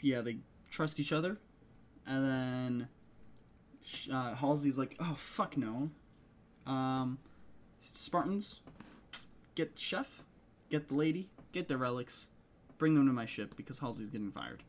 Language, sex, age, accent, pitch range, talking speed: English, male, 10-29, American, 130-165 Hz, 130 wpm